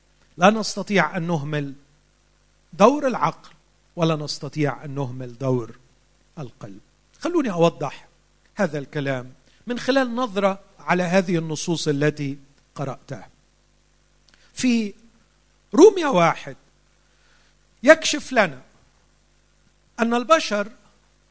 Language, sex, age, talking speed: Arabic, male, 50-69, 85 wpm